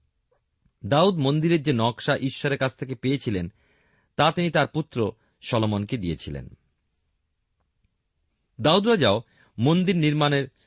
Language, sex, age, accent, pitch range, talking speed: Bengali, male, 40-59, native, 105-155 Hz, 75 wpm